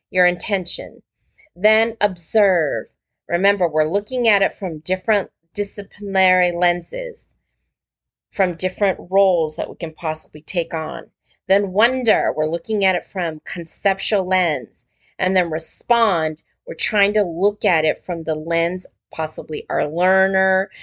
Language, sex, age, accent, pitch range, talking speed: English, female, 30-49, American, 165-205 Hz, 135 wpm